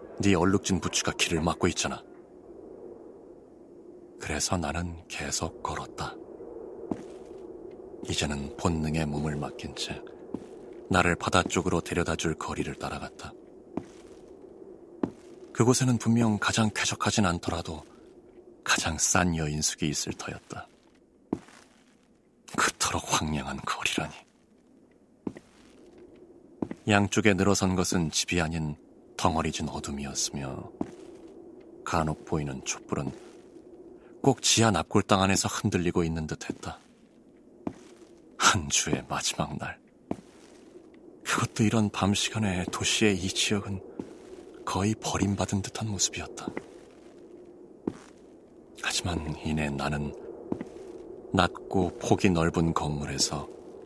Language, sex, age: Korean, male, 30-49